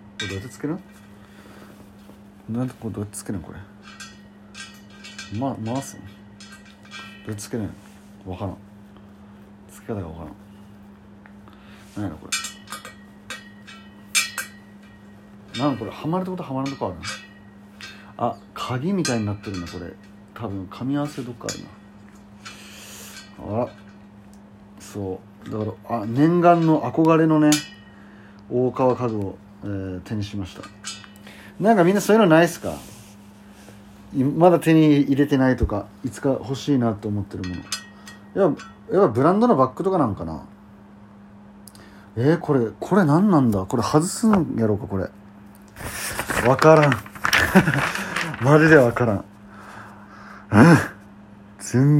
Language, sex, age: Japanese, male, 40-59